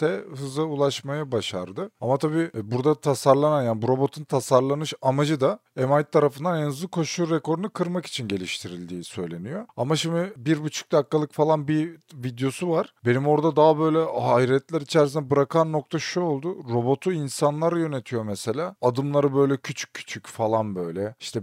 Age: 40-59